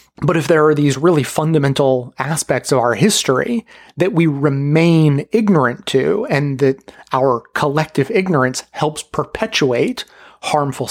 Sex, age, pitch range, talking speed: male, 30-49, 135-175 Hz, 130 wpm